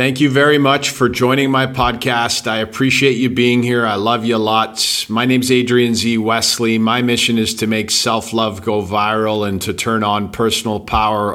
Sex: male